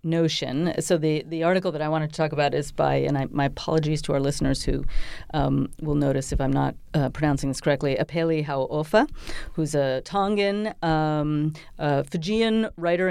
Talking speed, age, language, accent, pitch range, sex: 185 wpm, 40-59, English, American, 140-165 Hz, female